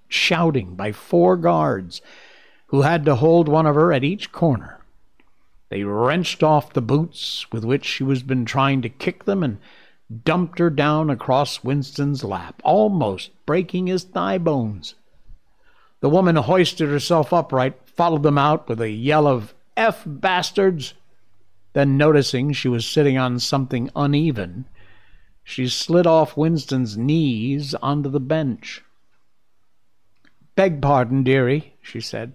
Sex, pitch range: male, 115-160 Hz